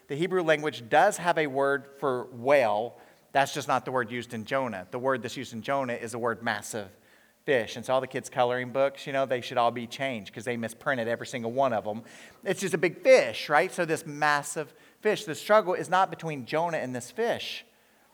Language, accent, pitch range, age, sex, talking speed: English, American, 120-165 Hz, 40-59, male, 230 wpm